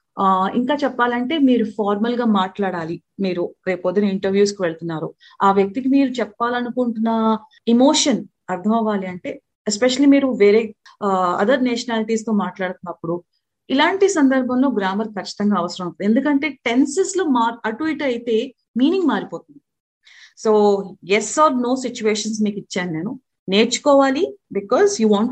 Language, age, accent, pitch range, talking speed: Telugu, 30-49, native, 195-270 Hz, 115 wpm